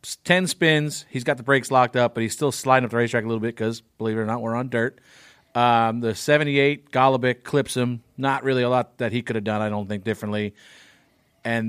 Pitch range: 110-135 Hz